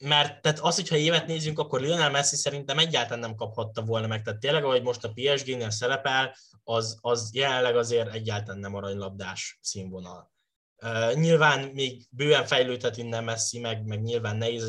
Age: 10-29